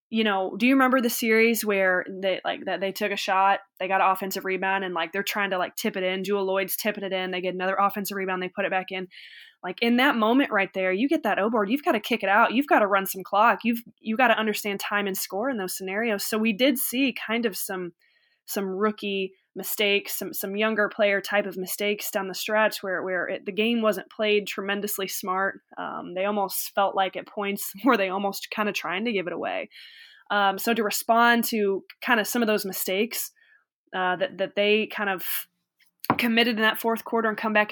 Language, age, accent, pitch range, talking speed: English, 20-39, American, 190-220 Hz, 235 wpm